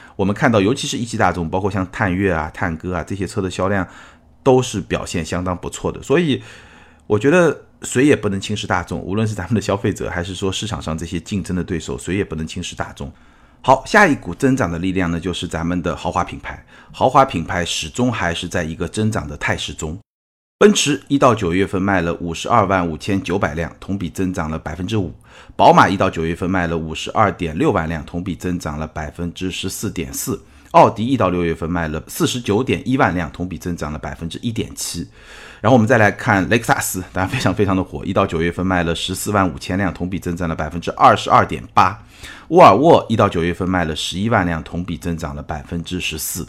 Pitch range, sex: 85-100 Hz, male